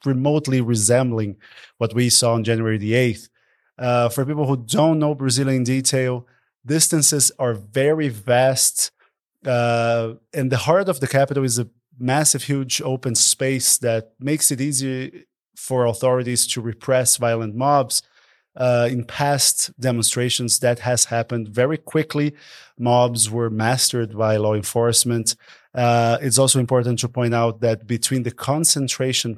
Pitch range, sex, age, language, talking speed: 115-135 Hz, male, 30-49, English, 145 wpm